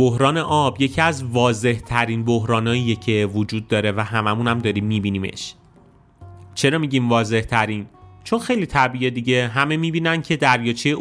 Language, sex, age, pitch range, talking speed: Persian, male, 30-49, 110-135 Hz, 145 wpm